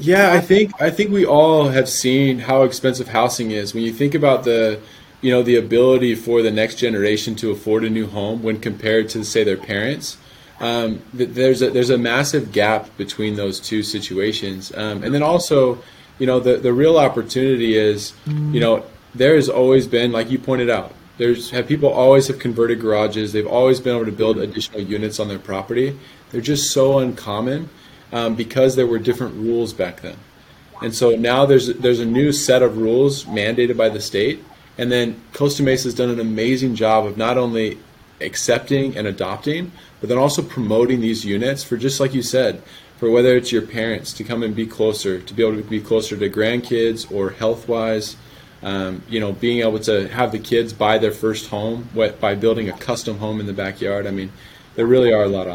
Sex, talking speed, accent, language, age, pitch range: male, 205 wpm, American, English, 20-39, 110-130 Hz